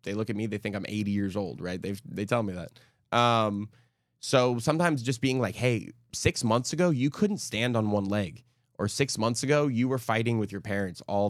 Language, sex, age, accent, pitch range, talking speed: English, male, 20-39, American, 105-125 Hz, 230 wpm